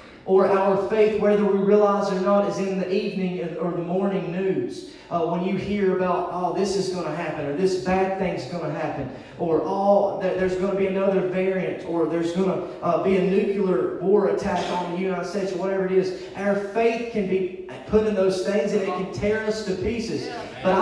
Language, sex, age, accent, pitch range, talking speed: English, male, 30-49, American, 195-245 Hz, 220 wpm